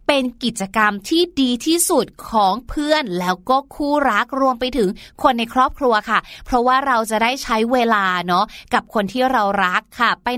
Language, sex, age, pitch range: Thai, female, 20-39, 215-290 Hz